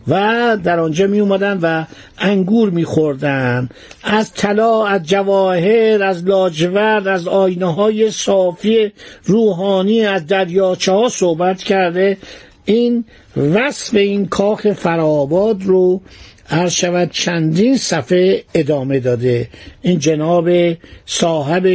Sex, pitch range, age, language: male, 160-205 Hz, 60-79, Persian